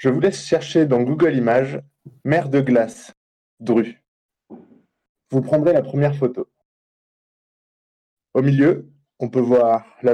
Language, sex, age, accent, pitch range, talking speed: French, male, 20-39, French, 120-145 Hz, 130 wpm